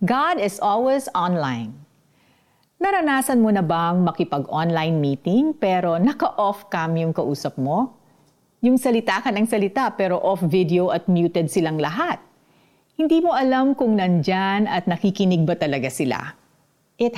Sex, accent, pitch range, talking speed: female, native, 165-225 Hz, 135 wpm